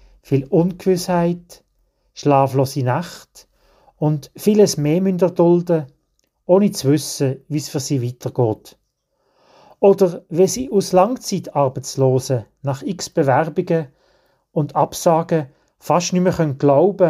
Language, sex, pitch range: German, male, 135-175 Hz